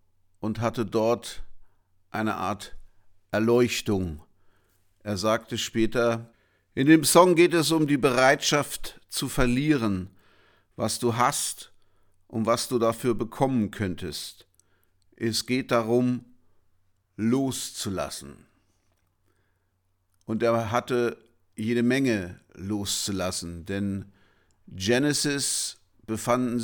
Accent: German